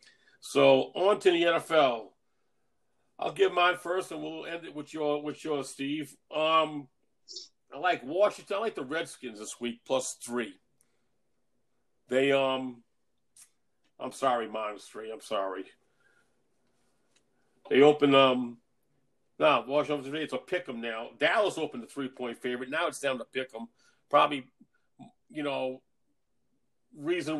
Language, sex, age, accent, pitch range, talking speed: English, male, 40-59, American, 125-155 Hz, 140 wpm